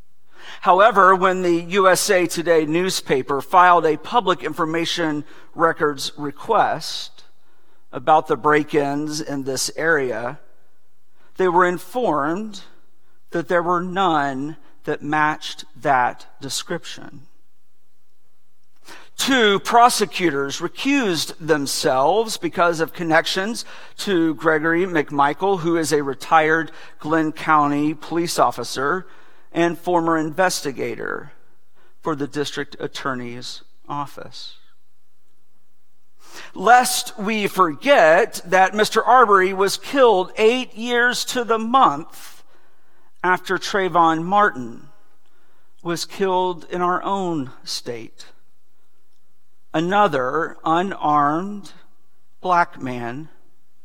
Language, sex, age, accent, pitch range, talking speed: English, male, 50-69, American, 155-195 Hz, 90 wpm